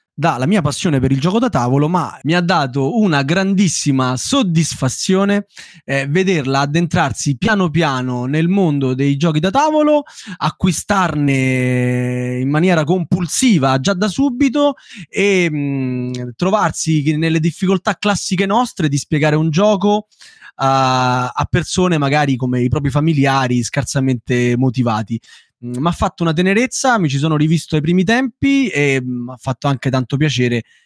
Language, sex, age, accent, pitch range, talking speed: Italian, male, 20-39, native, 130-185 Hz, 140 wpm